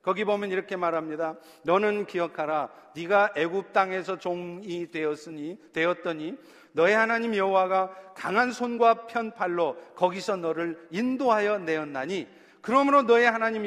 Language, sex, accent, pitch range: Korean, male, native, 180-255 Hz